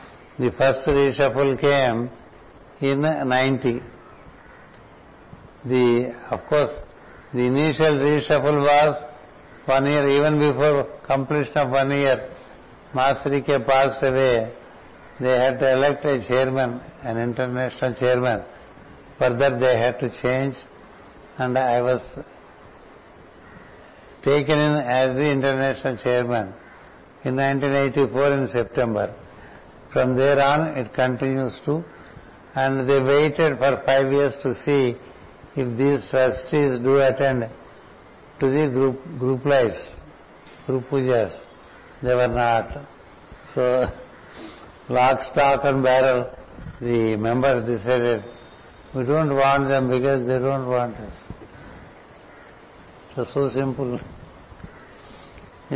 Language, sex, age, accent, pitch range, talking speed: Telugu, male, 60-79, native, 125-140 Hz, 110 wpm